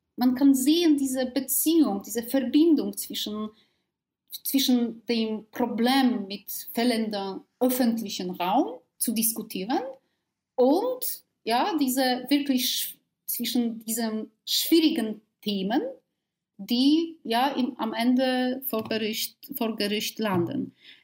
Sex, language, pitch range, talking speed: female, German, 220-280 Hz, 85 wpm